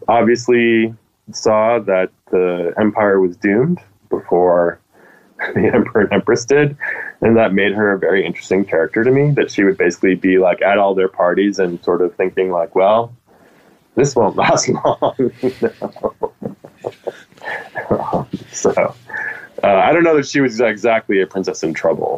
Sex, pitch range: male, 90-110 Hz